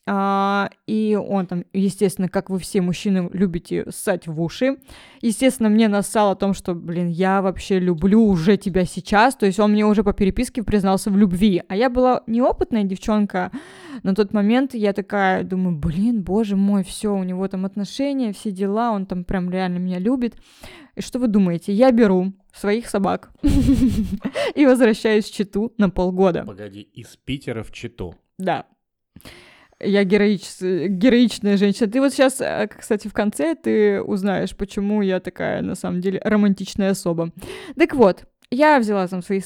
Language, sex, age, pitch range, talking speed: Russian, female, 20-39, 190-235 Hz, 165 wpm